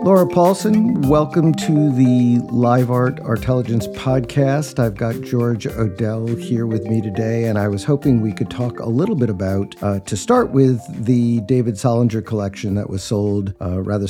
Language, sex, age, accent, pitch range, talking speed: English, male, 50-69, American, 105-125 Hz, 175 wpm